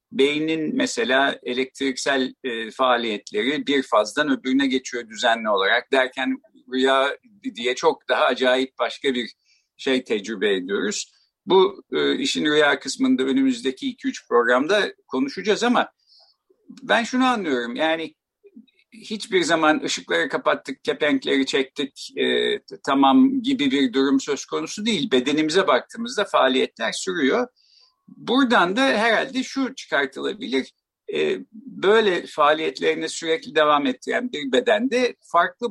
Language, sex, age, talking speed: Turkish, male, 50-69, 115 wpm